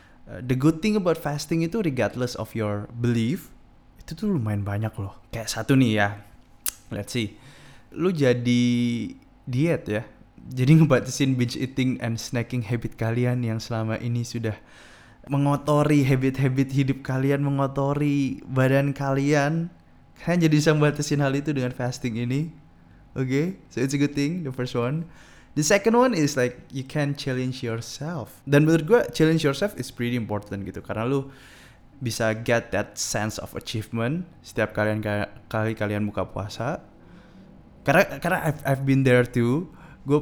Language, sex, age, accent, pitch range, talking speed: Indonesian, male, 20-39, native, 115-155 Hz, 155 wpm